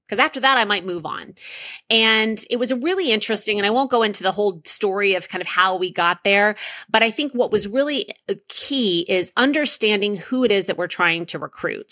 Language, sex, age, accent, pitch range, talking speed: English, female, 30-49, American, 185-250 Hz, 225 wpm